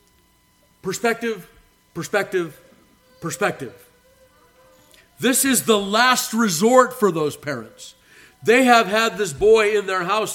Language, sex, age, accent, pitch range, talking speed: English, male, 50-69, American, 150-225 Hz, 110 wpm